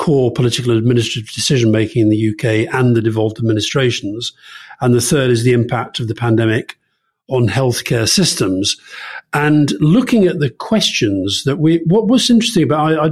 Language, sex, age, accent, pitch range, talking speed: English, male, 50-69, British, 115-155 Hz, 165 wpm